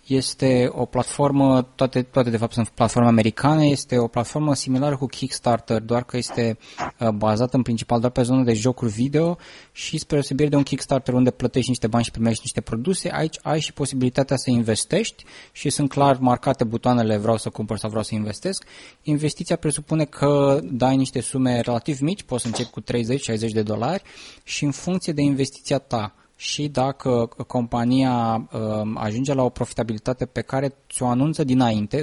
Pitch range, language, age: 115-140 Hz, Romanian, 20-39